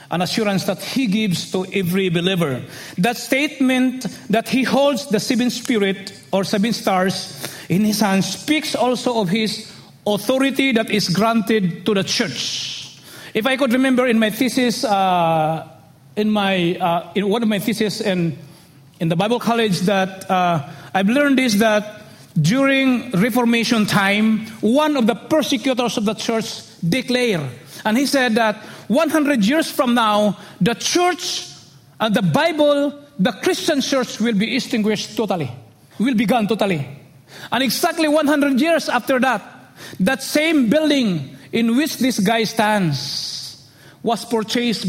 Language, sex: English, male